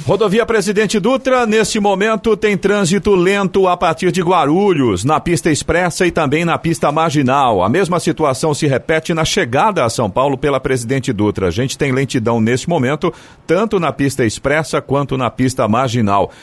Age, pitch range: 40-59, 115-155 Hz